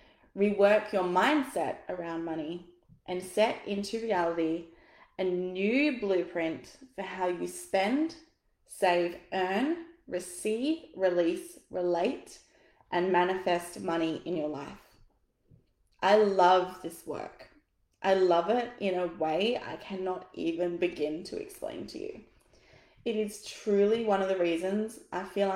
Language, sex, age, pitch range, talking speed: English, female, 20-39, 175-220 Hz, 125 wpm